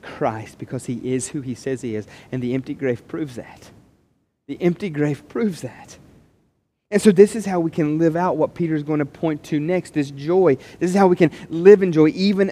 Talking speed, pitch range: 230 wpm, 175-280 Hz